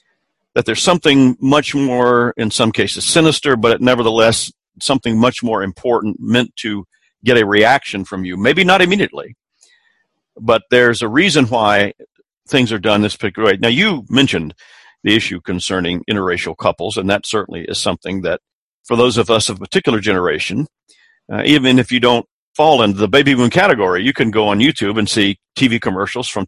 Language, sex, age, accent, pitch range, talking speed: English, male, 50-69, American, 105-130 Hz, 180 wpm